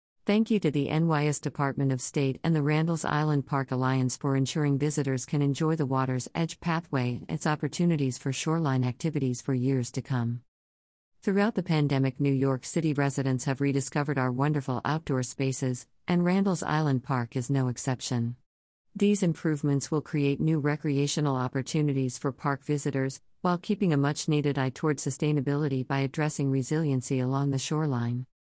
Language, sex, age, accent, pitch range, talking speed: English, female, 50-69, American, 130-155 Hz, 160 wpm